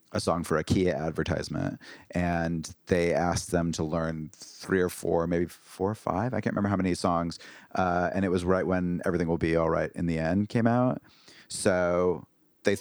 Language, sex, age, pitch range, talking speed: English, male, 30-49, 80-95 Hz, 200 wpm